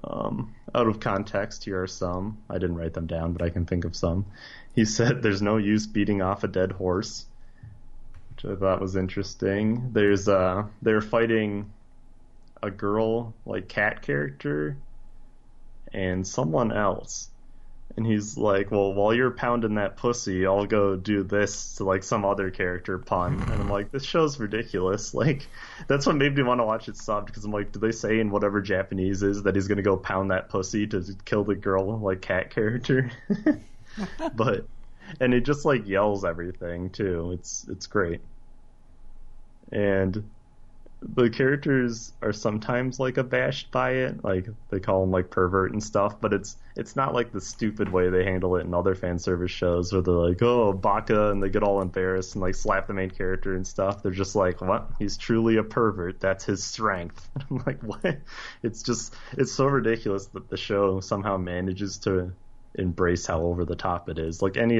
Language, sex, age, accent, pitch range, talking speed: English, male, 20-39, American, 95-110 Hz, 185 wpm